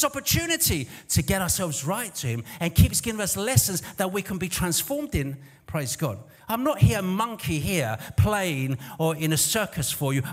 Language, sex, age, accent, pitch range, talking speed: English, male, 50-69, British, 160-225 Hz, 185 wpm